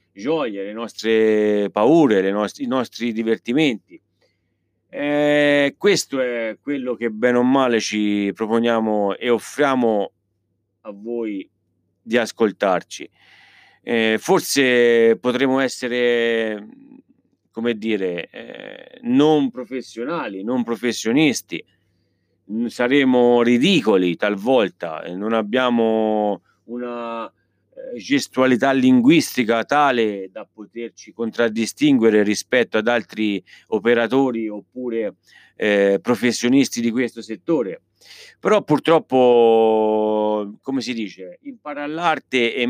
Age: 40-59